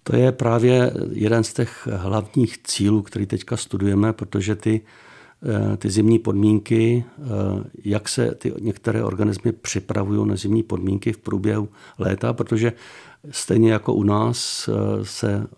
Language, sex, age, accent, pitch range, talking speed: Czech, male, 60-79, native, 105-115 Hz, 130 wpm